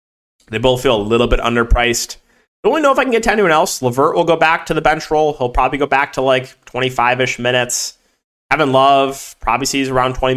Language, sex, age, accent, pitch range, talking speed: English, male, 20-39, American, 125-170 Hz, 230 wpm